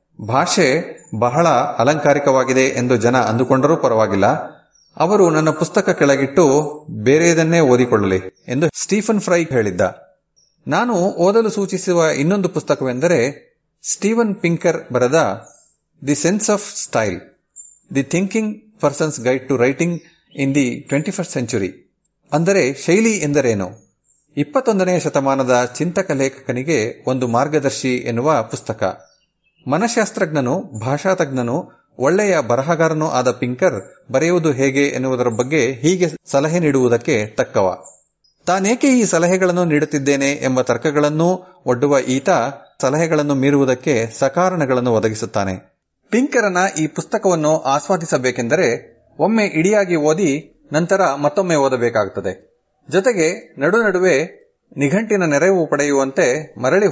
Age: 40-59